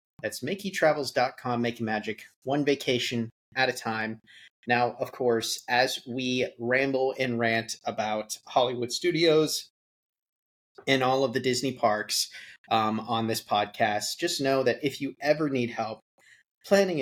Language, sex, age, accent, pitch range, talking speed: English, male, 30-49, American, 115-135 Hz, 140 wpm